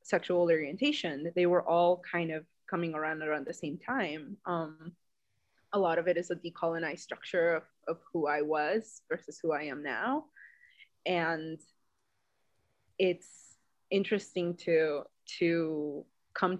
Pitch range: 160-185 Hz